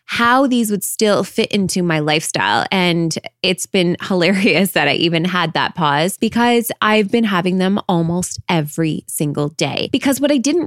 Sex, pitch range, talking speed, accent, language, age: female, 175-225 Hz, 175 wpm, American, English, 20-39